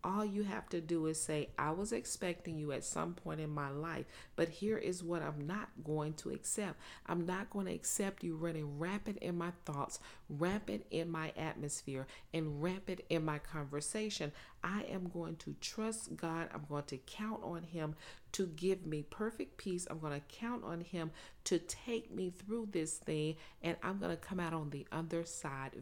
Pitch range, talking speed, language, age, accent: 150-185 Hz, 200 wpm, English, 40-59, American